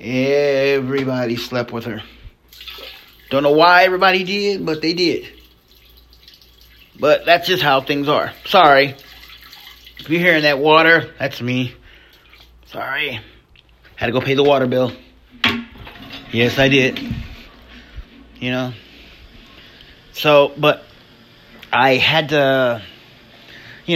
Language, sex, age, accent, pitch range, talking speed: English, male, 30-49, American, 115-155 Hz, 115 wpm